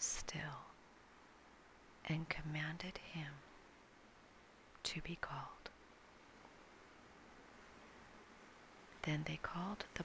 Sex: female